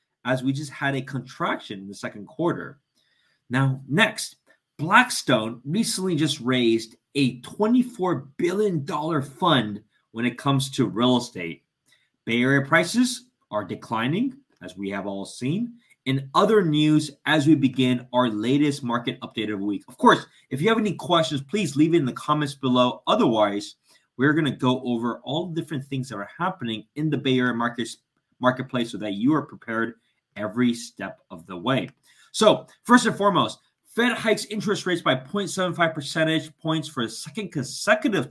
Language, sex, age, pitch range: English, male, 30-49, 125-165 Hz